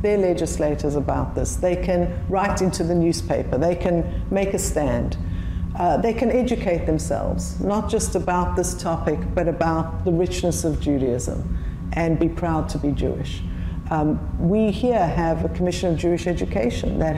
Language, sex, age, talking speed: English, female, 60-79, 165 wpm